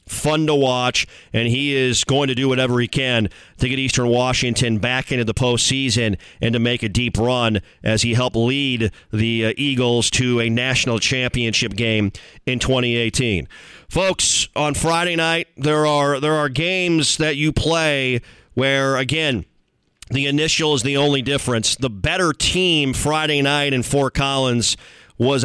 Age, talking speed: 40-59, 160 wpm